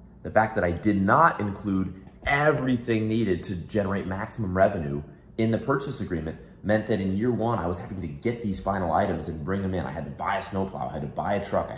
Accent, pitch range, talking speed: American, 90-110 Hz, 240 wpm